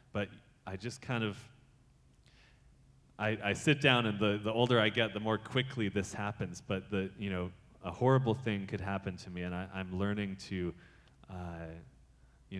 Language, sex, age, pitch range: English, male, 20-39, 90-110 Hz